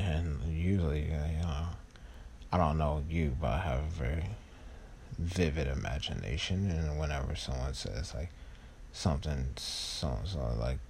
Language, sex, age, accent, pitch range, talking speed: English, male, 30-49, American, 70-85 Hz, 130 wpm